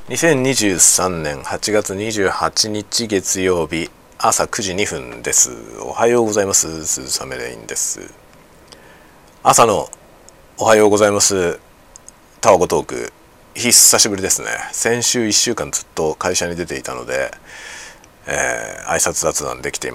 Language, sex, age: Japanese, male, 40-59